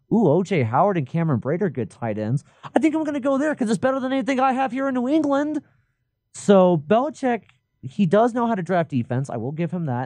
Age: 30-49